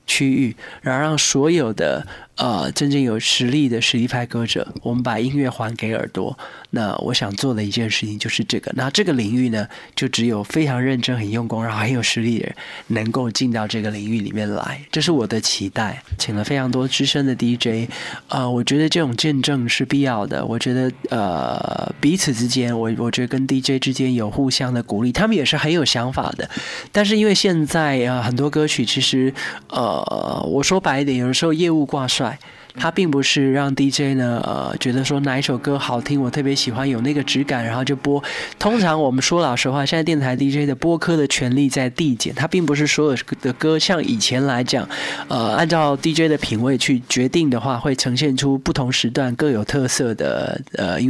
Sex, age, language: male, 20-39, Chinese